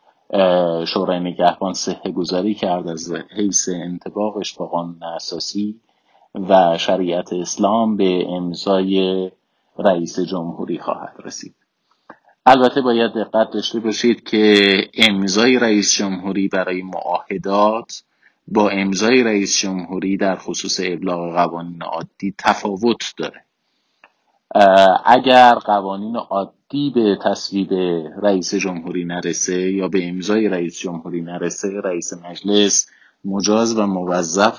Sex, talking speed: male, 105 wpm